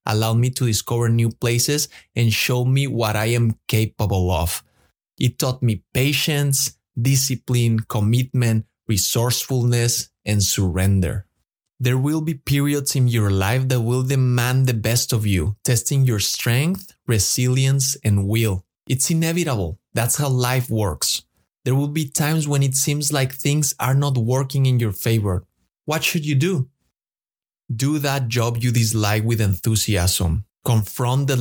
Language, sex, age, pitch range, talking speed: English, male, 20-39, 110-140 Hz, 145 wpm